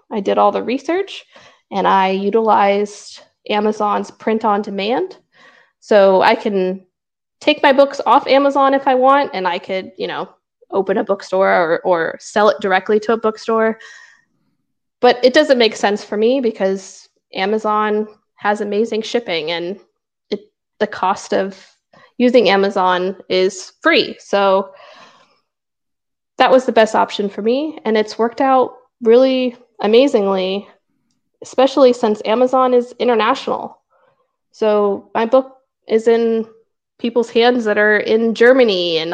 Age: 20-39